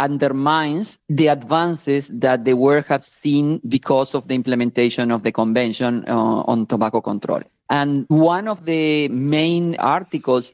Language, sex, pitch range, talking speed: English, male, 125-160 Hz, 140 wpm